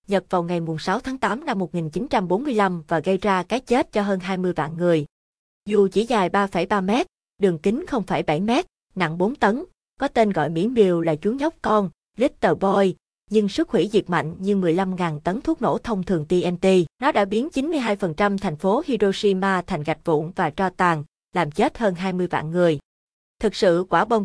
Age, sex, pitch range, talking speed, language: 20-39, female, 175-220 Hz, 190 wpm, Vietnamese